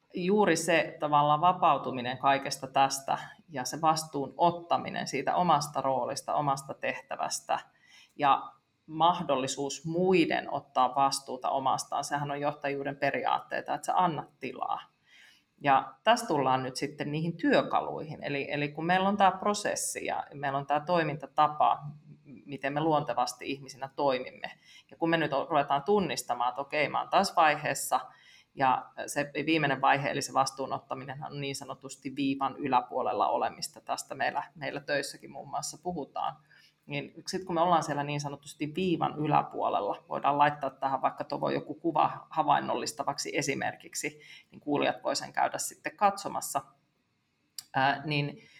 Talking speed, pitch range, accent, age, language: 140 wpm, 140-160 Hz, native, 30-49, Finnish